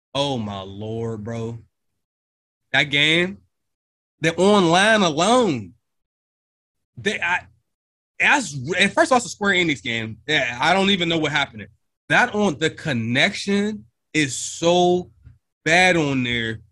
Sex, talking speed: male, 130 wpm